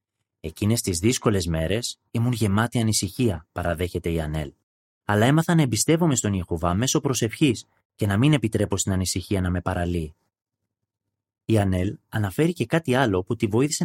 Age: 30-49